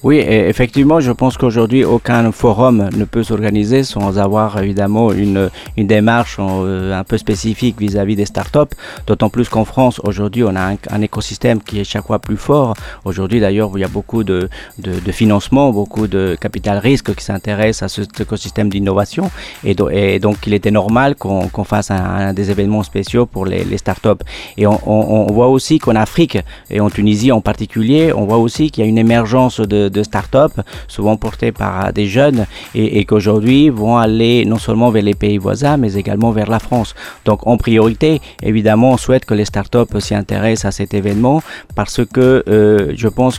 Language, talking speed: Arabic, 195 wpm